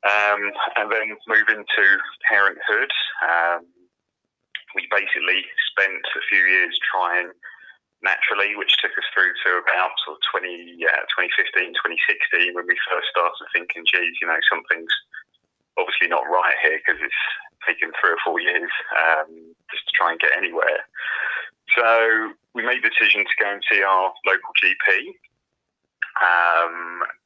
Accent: British